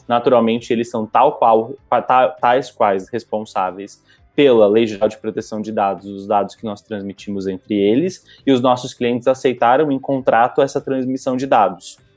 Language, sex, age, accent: Portuguese, male, 20-39, Brazilian